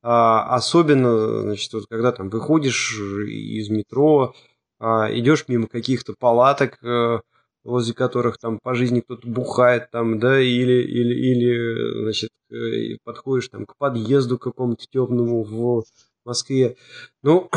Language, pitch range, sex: Russian, 110-135 Hz, male